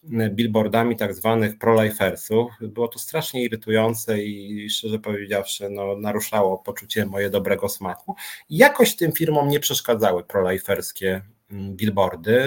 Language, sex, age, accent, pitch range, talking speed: Polish, male, 30-49, native, 110-145 Hz, 120 wpm